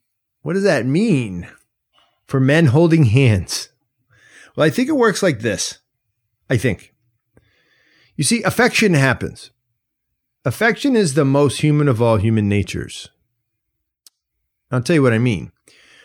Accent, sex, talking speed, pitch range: American, male, 135 wpm, 105-150 Hz